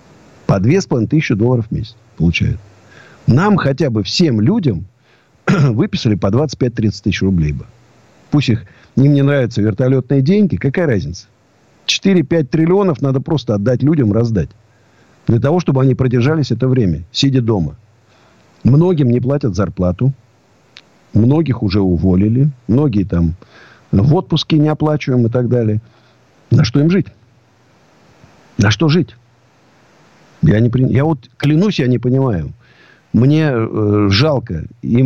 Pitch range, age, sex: 105-145 Hz, 50-69, male